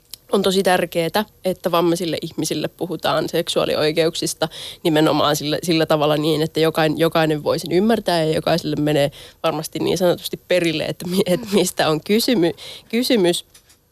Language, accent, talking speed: Finnish, native, 135 wpm